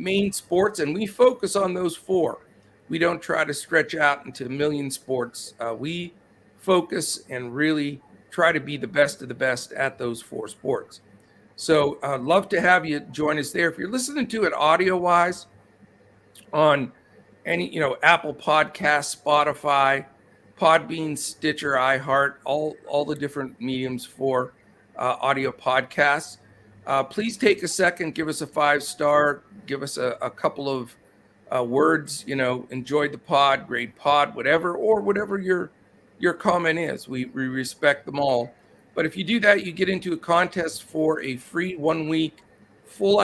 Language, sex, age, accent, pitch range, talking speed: English, male, 50-69, American, 135-175 Hz, 170 wpm